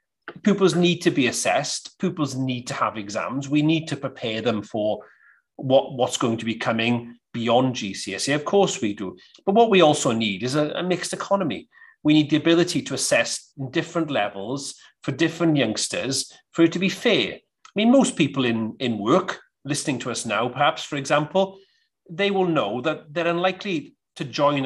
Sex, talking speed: male, 185 wpm